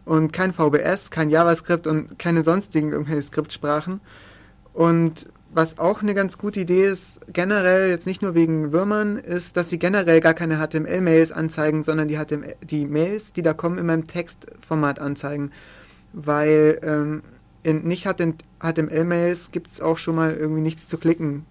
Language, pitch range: German, 150-170 Hz